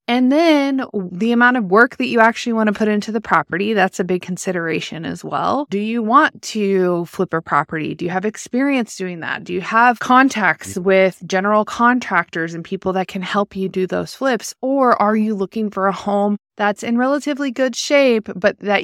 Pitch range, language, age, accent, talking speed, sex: 185-225 Hz, English, 20-39, American, 205 wpm, female